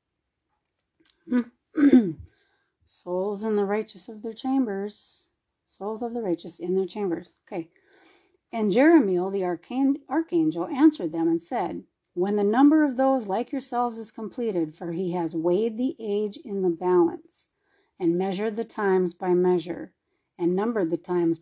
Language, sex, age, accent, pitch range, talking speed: English, female, 40-59, American, 175-265 Hz, 145 wpm